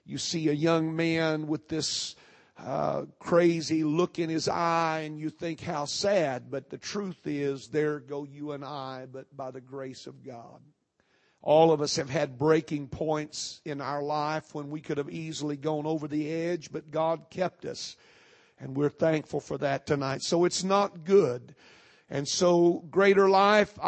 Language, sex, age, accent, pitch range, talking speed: English, male, 50-69, American, 150-185 Hz, 175 wpm